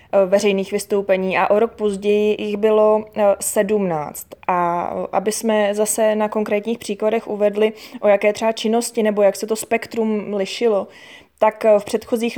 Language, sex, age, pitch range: Czech, female, 20-39, 200-220 Hz